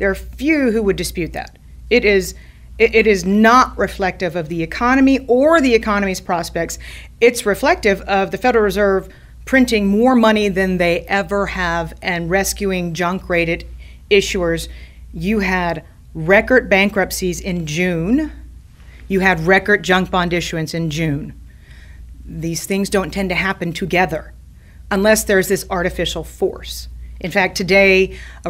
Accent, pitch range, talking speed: American, 170-220 Hz, 140 wpm